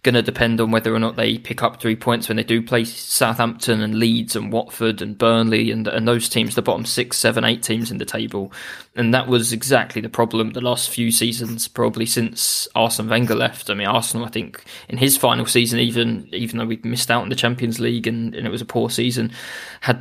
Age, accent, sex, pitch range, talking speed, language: 20-39, British, male, 115-135 Hz, 235 wpm, English